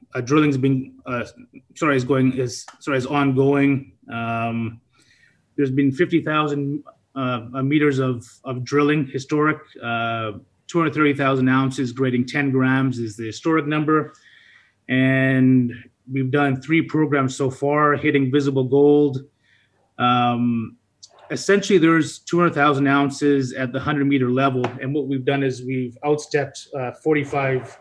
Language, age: English, 30-49